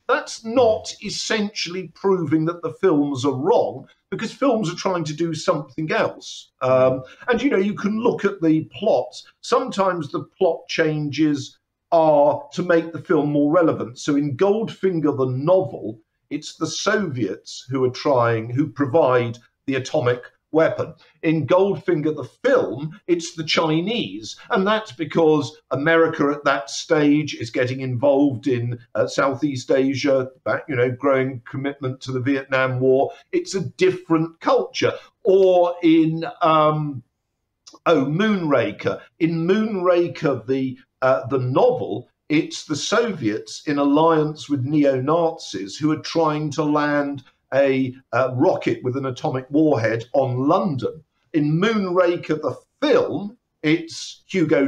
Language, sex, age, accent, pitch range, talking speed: English, male, 50-69, British, 135-175 Hz, 135 wpm